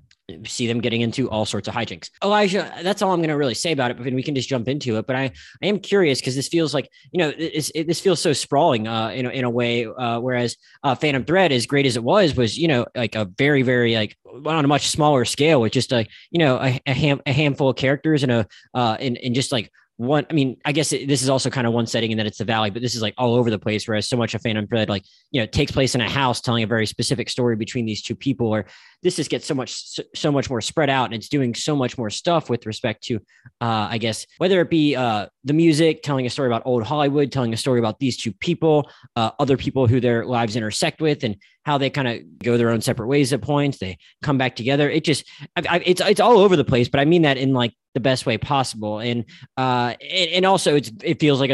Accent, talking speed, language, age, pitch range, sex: American, 270 wpm, English, 20-39, 115-145 Hz, male